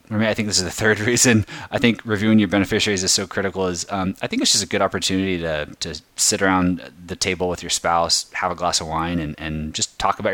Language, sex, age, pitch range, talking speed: English, male, 20-39, 85-100 Hz, 260 wpm